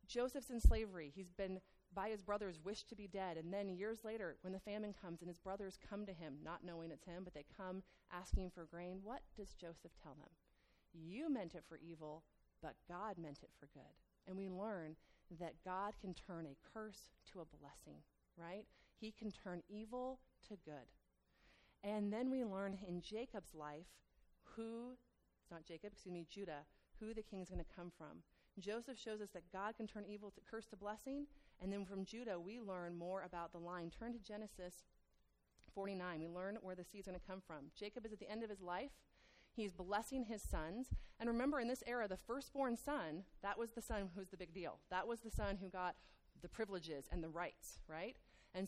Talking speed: 210 wpm